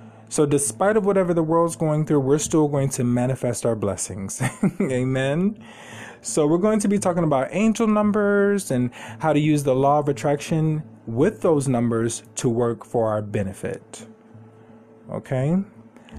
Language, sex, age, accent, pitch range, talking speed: English, male, 20-39, American, 110-150 Hz, 155 wpm